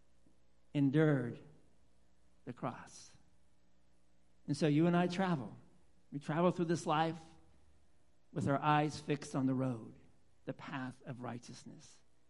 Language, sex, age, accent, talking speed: English, male, 60-79, American, 120 wpm